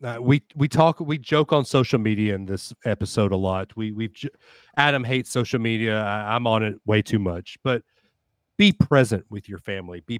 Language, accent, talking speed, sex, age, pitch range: English, American, 205 wpm, male, 40-59, 105-135 Hz